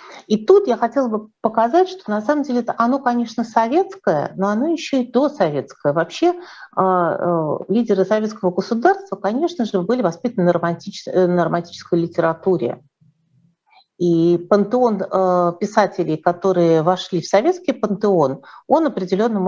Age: 50-69